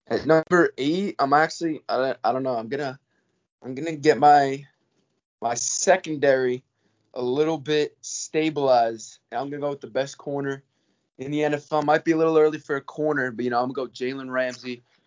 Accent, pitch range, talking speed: American, 115-140 Hz, 195 wpm